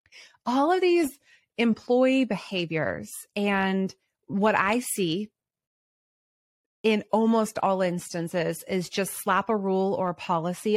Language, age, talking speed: English, 30-49, 115 wpm